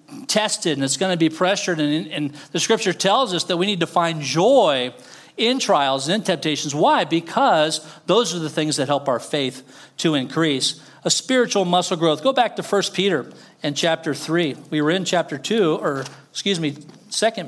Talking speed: 195 wpm